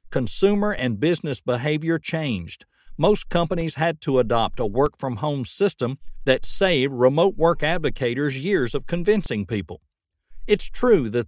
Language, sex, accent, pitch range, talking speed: English, male, American, 120-165 Hz, 135 wpm